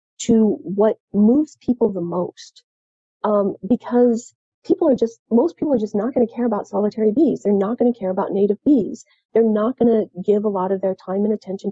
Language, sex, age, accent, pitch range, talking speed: English, female, 40-59, American, 195-245 Hz, 200 wpm